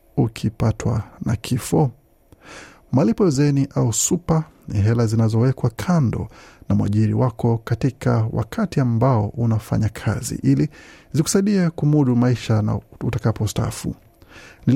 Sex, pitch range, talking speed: male, 110-145 Hz, 105 wpm